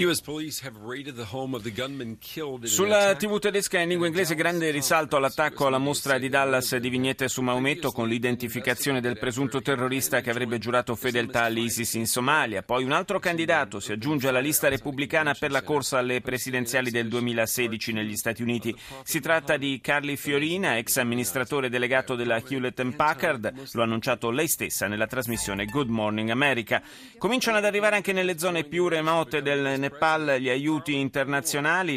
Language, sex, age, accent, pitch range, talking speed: Italian, male, 30-49, native, 115-145 Hz, 155 wpm